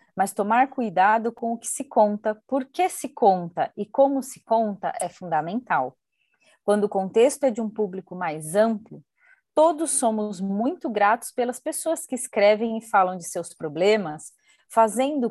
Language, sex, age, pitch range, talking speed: Portuguese, female, 30-49, 185-260 Hz, 160 wpm